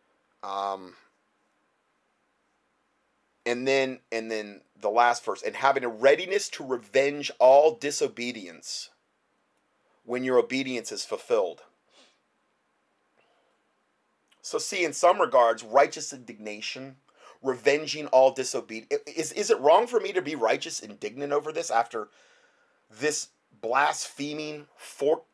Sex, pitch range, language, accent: male, 130-180 Hz, English, American